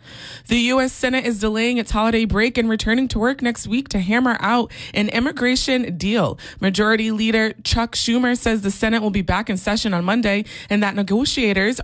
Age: 20-39